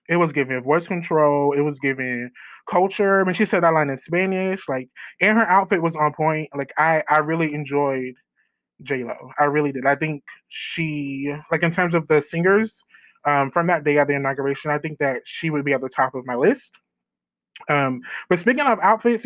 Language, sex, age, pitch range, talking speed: English, male, 20-39, 145-180 Hz, 205 wpm